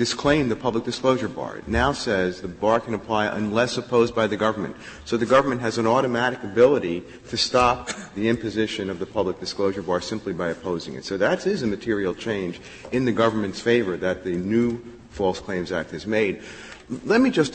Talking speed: 200 wpm